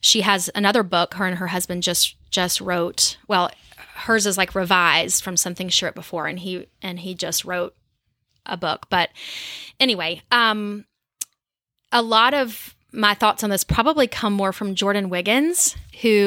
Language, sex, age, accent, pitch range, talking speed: English, female, 20-39, American, 185-225 Hz, 170 wpm